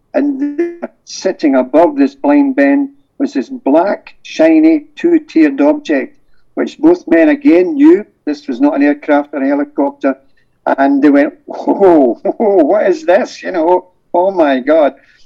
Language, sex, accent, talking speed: English, male, British, 155 wpm